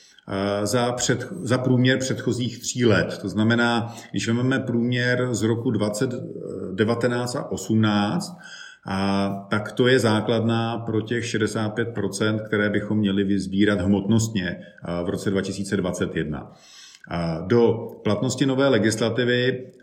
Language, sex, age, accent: Czech, male, 40-59, native